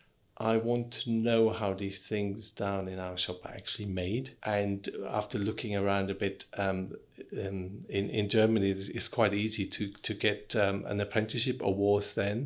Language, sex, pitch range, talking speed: English, male, 100-115 Hz, 175 wpm